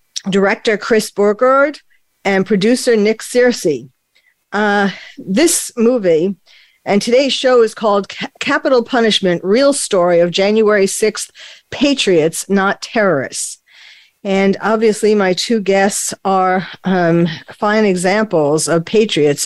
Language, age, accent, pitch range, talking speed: English, 50-69, American, 195-235 Hz, 115 wpm